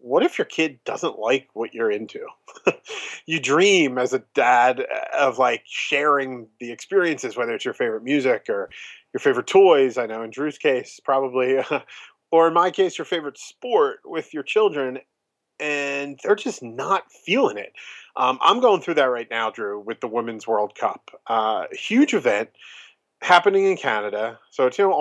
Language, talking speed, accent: English, 170 wpm, American